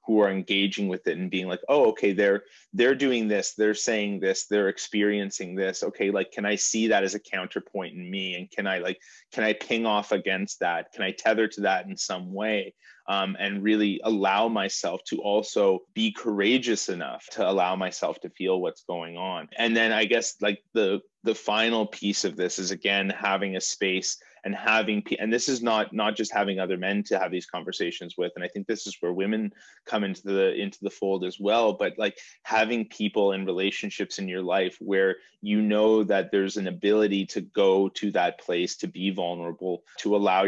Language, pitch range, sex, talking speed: English, 95-105 Hz, male, 210 wpm